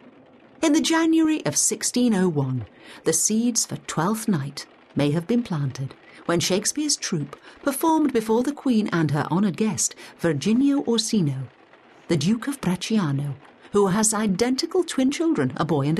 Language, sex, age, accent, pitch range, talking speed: English, female, 50-69, British, 145-230 Hz, 145 wpm